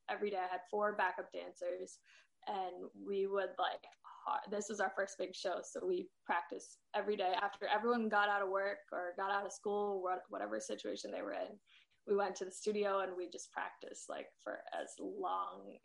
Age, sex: 10-29, female